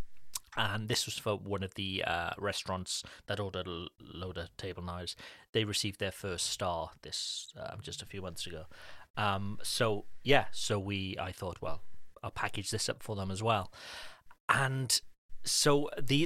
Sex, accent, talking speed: male, British, 175 wpm